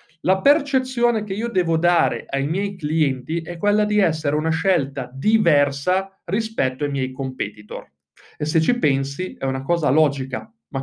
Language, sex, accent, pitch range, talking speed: Italian, male, native, 135-195 Hz, 160 wpm